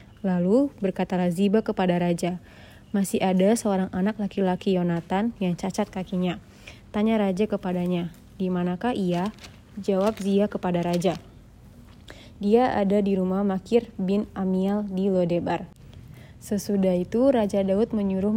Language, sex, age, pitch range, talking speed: Indonesian, female, 20-39, 180-215 Hz, 125 wpm